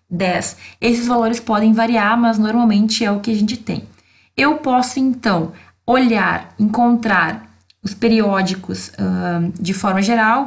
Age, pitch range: 20-39, 195-235 Hz